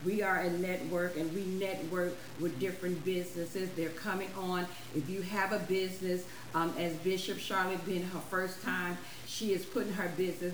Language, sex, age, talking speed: English, female, 50-69, 175 wpm